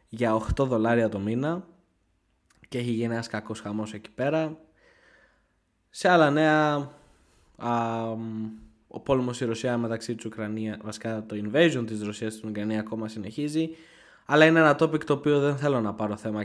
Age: 20-39